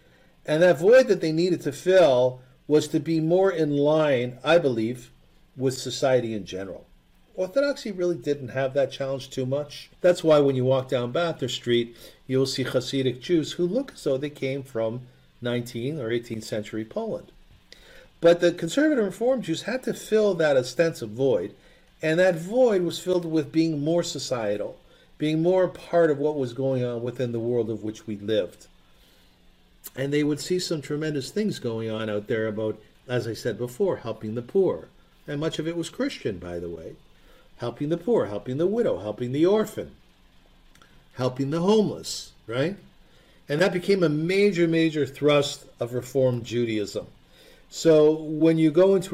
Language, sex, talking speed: English, male, 175 wpm